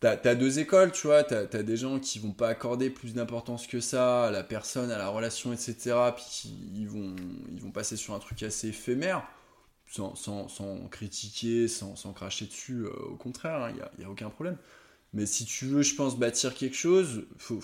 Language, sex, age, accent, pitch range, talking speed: French, male, 20-39, French, 105-140 Hz, 230 wpm